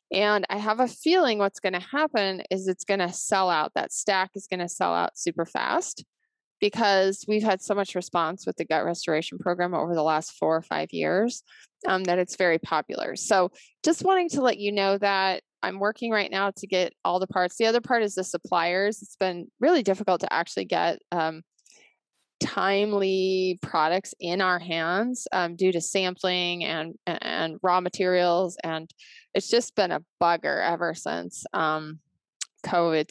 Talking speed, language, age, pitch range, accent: 185 wpm, English, 20-39, 175-215 Hz, American